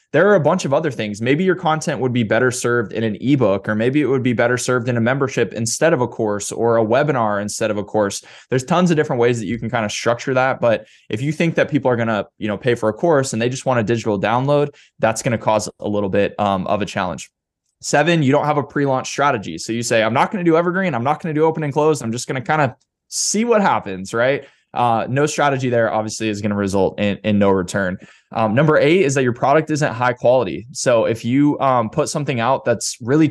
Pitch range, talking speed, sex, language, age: 110-145 Hz, 260 wpm, male, English, 20-39